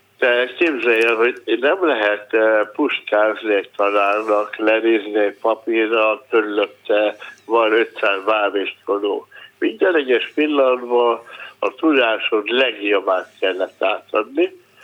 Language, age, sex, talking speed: Hungarian, 60-79, male, 95 wpm